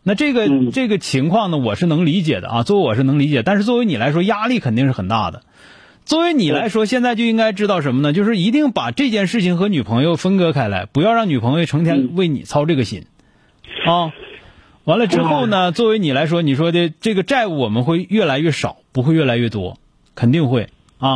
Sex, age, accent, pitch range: male, 30-49, native, 130-190 Hz